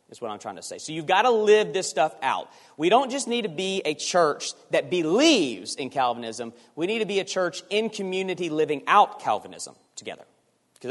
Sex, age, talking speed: male, 40-59, 215 wpm